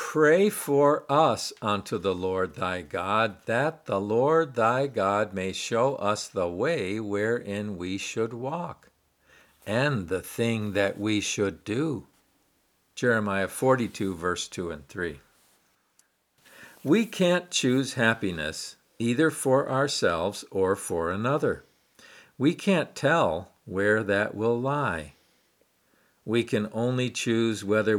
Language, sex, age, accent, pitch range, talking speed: English, male, 50-69, American, 100-135 Hz, 120 wpm